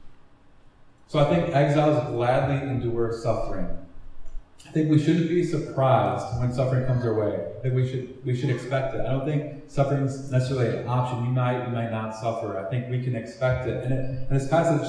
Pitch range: 115-140 Hz